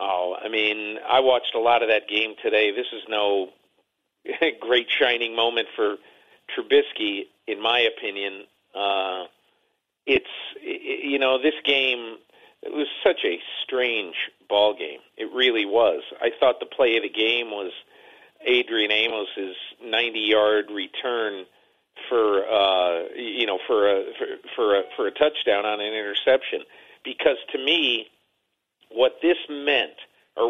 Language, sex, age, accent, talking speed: English, male, 50-69, American, 145 wpm